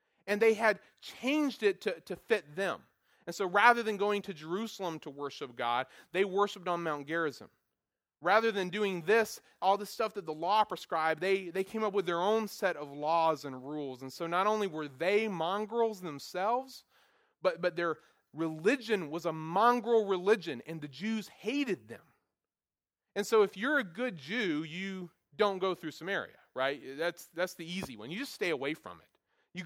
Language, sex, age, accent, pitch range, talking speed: English, male, 30-49, American, 170-220 Hz, 190 wpm